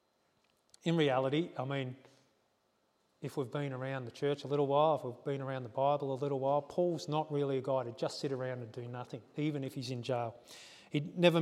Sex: male